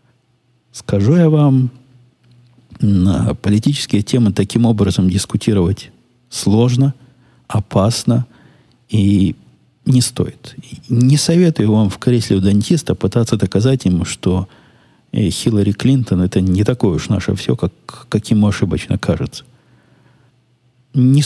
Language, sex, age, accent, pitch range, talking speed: Russian, male, 50-69, native, 95-125 Hz, 115 wpm